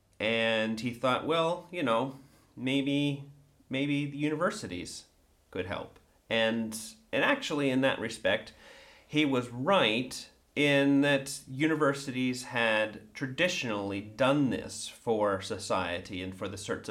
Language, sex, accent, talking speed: English, male, American, 120 wpm